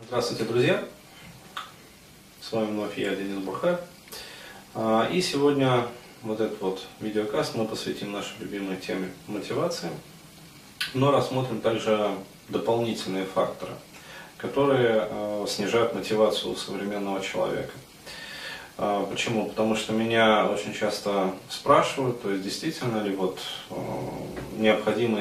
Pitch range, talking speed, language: 100-130 Hz, 105 wpm, Russian